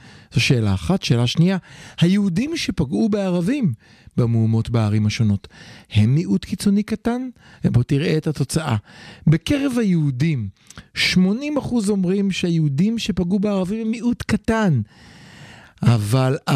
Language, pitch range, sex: Hebrew, 125-190 Hz, male